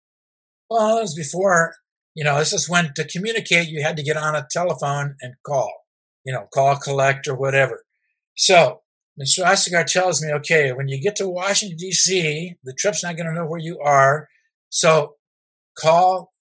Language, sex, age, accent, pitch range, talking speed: English, male, 50-69, American, 140-180 Hz, 180 wpm